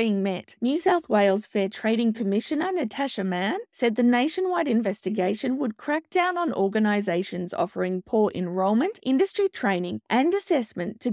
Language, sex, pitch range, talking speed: English, female, 200-275 Hz, 145 wpm